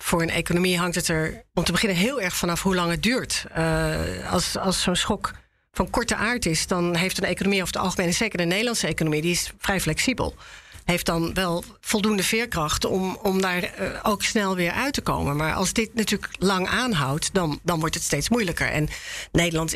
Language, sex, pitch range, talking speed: Dutch, female, 160-200 Hz, 210 wpm